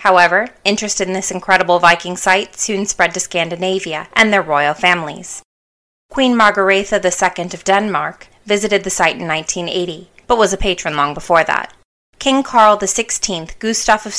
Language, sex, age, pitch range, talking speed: English, female, 20-39, 170-210 Hz, 155 wpm